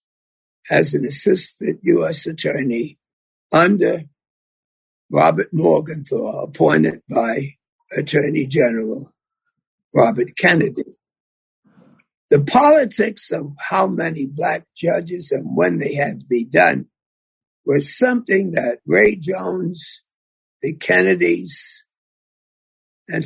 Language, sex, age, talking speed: English, male, 60-79, 95 wpm